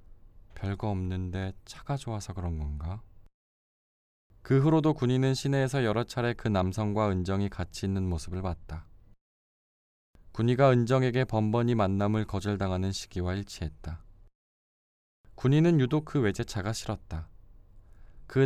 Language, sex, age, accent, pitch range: Korean, male, 20-39, native, 90-110 Hz